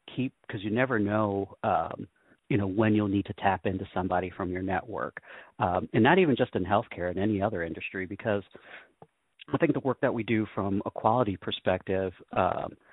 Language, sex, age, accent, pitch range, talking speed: English, male, 40-59, American, 95-115 Hz, 195 wpm